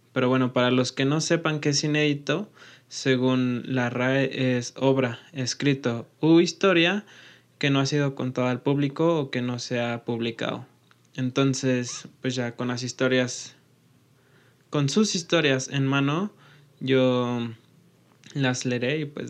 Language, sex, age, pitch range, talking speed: Spanish, male, 20-39, 125-140 Hz, 145 wpm